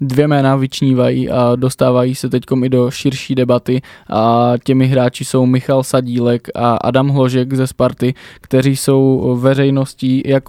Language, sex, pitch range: Czech, male, 125-135 Hz